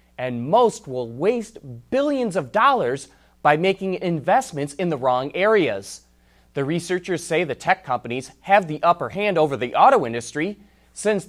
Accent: American